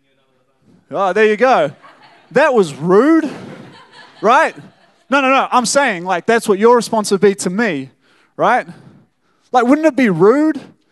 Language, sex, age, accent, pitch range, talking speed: English, male, 20-39, Australian, 165-235 Hz, 155 wpm